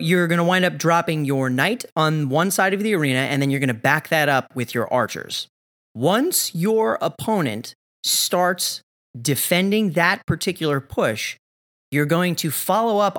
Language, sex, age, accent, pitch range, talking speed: English, male, 30-49, American, 140-205 Hz, 175 wpm